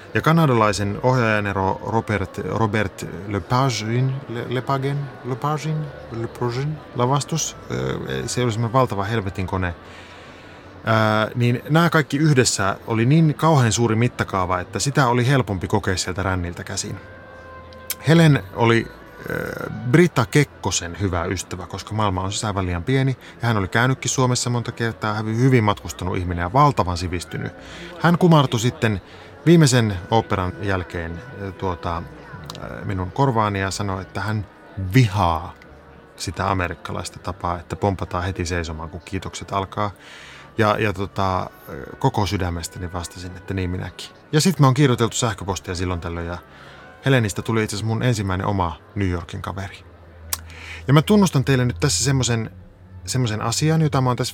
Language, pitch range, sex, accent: Finnish, 90-125 Hz, male, native